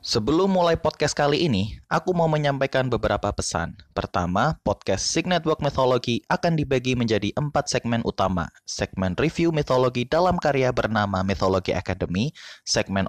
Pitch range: 95-150 Hz